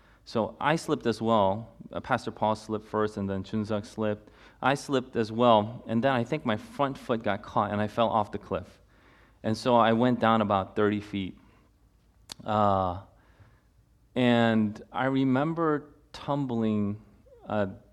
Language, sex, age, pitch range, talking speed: English, male, 30-49, 105-125 Hz, 155 wpm